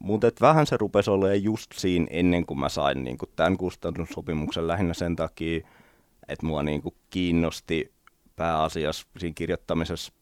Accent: native